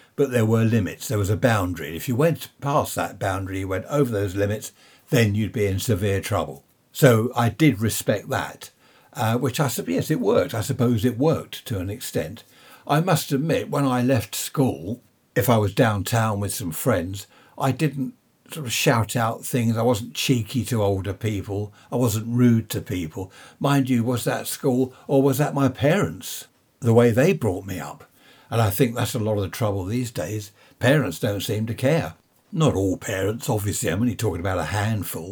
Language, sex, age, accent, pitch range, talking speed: English, male, 60-79, British, 105-130 Hz, 200 wpm